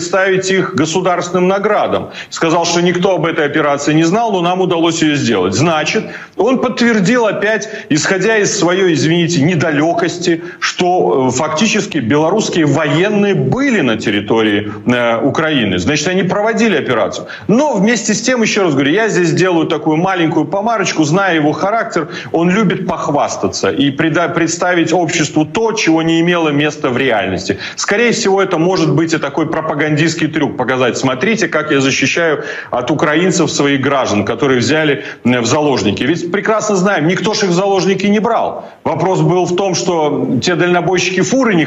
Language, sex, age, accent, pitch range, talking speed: Ukrainian, male, 40-59, native, 150-190 Hz, 160 wpm